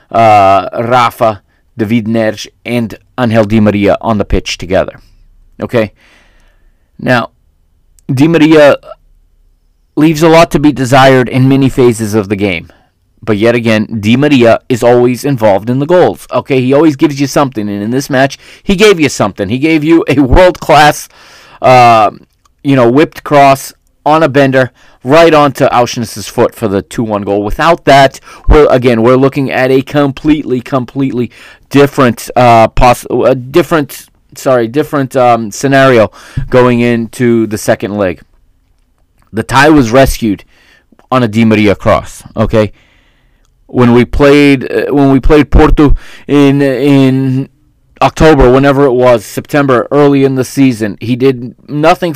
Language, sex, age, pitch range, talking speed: English, male, 30-49, 115-145 Hz, 150 wpm